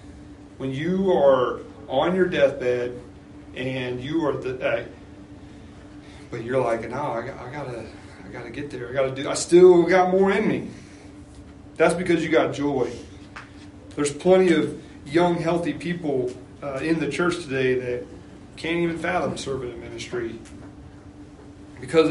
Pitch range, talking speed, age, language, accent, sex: 95-140 Hz, 150 wpm, 40-59, English, American, male